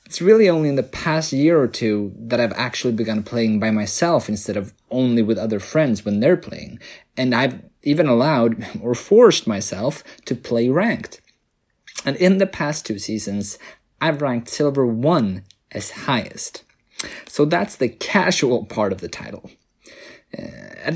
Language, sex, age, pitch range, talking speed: English, male, 30-49, 115-165 Hz, 160 wpm